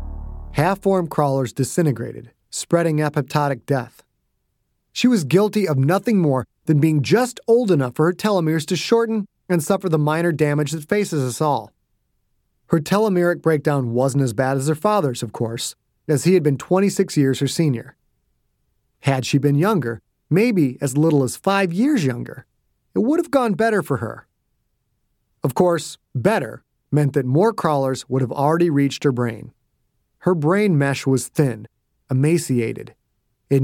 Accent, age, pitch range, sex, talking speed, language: American, 30-49, 130-175 Hz, male, 155 wpm, English